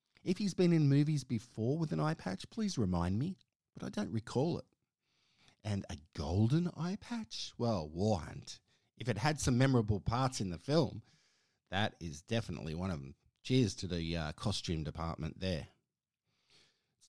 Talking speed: 170 wpm